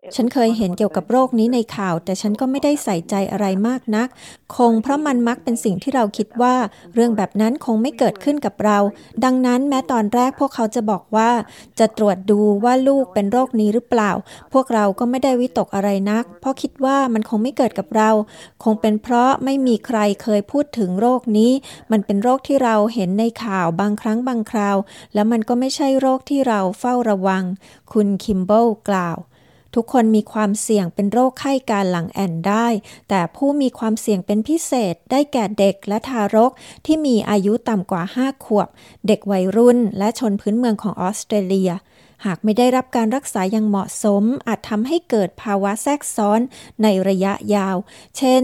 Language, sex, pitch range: Thai, female, 205-245 Hz